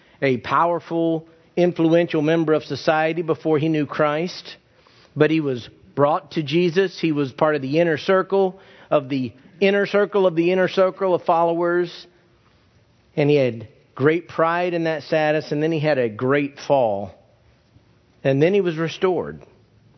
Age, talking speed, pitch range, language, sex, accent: 50-69, 160 wpm, 140-175 Hz, English, male, American